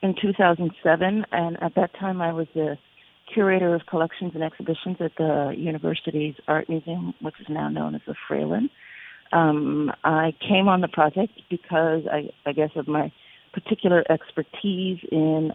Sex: female